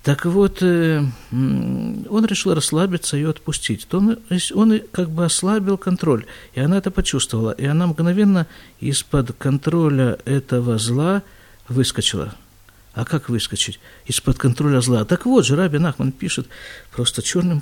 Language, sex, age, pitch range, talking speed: Russian, male, 50-69, 115-185 Hz, 130 wpm